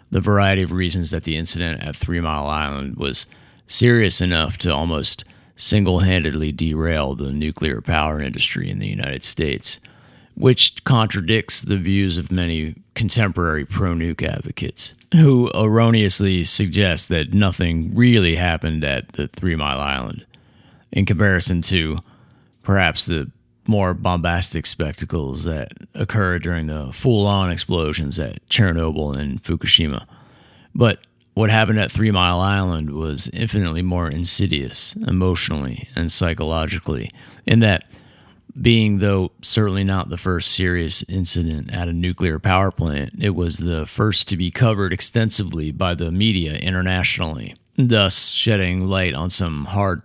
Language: English